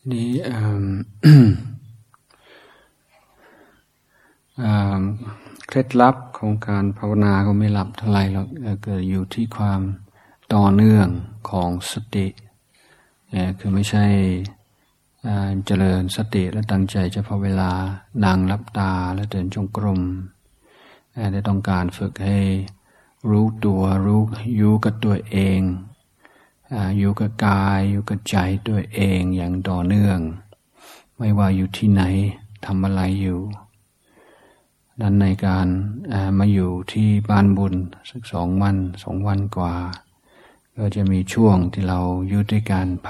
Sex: male